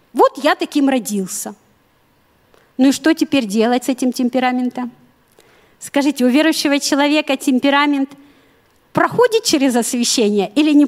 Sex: female